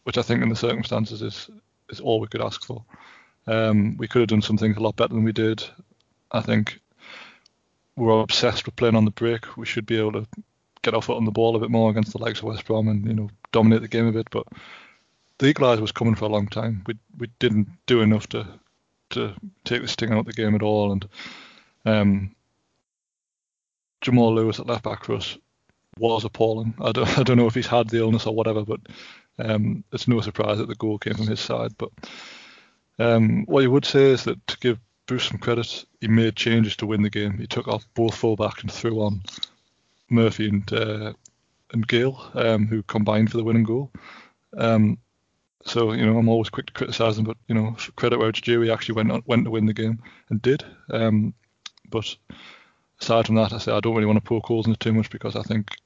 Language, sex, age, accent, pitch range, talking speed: English, male, 20-39, British, 110-115 Hz, 230 wpm